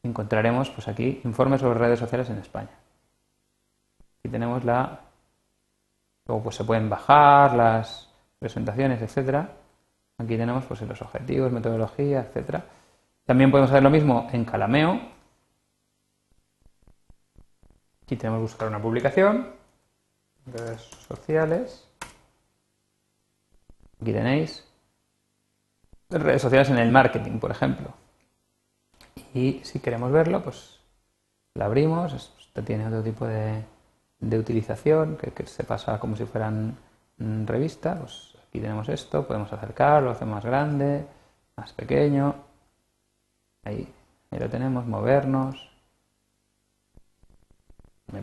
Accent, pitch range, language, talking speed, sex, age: Spanish, 110-135 Hz, Spanish, 110 wpm, male, 30-49